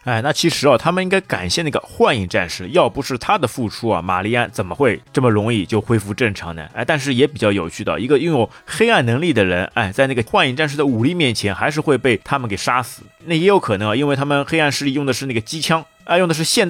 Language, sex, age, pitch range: Chinese, male, 20-39, 105-135 Hz